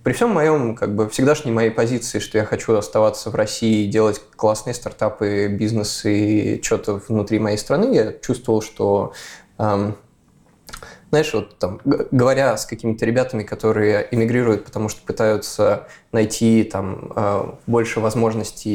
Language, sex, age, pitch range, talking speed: Russian, male, 20-39, 105-130 Hz, 140 wpm